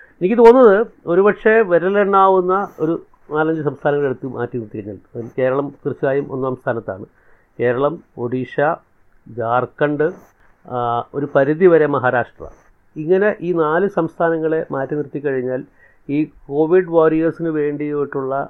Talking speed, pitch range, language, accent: 105 wpm, 125-155 Hz, Malayalam, native